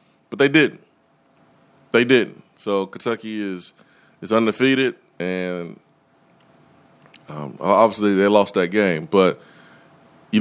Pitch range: 100-125 Hz